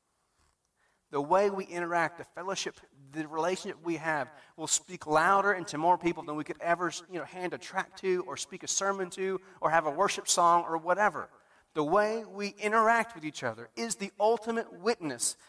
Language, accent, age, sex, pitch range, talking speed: English, American, 40-59, male, 140-180 Hz, 195 wpm